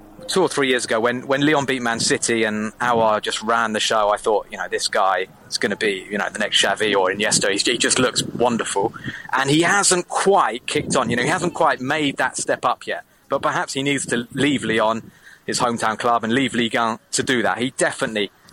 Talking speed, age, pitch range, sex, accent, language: 240 wpm, 30-49, 115-140 Hz, male, British, English